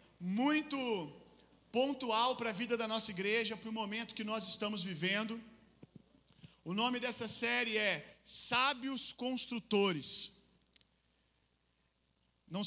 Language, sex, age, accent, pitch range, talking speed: Gujarati, male, 40-59, Brazilian, 190-230 Hz, 110 wpm